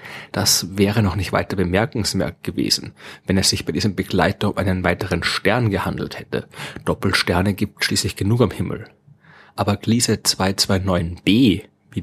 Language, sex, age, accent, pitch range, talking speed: German, male, 30-49, German, 95-115 Hz, 145 wpm